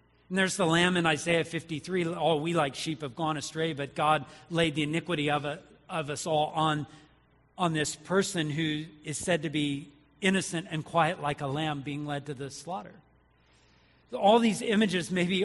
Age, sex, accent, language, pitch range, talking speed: 40-59, male, American, English, 150-190 Hz, 195 wpm